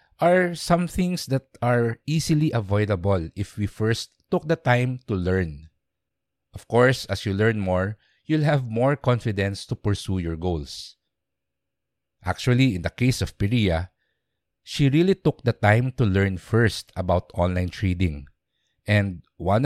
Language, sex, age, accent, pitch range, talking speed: English, male, 50-69, Filipino, 90-120 Hz, 145 wpm